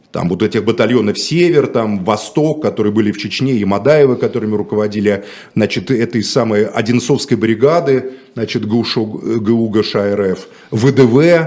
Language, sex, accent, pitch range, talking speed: Russian, male, native, 115-160 Hz, 135 wpm